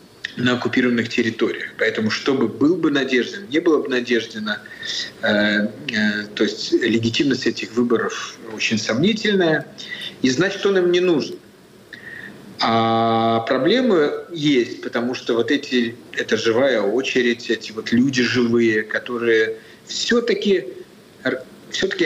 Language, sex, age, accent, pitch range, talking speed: Russian, male, 50-69, native, 120-155 Hz, 115 wpm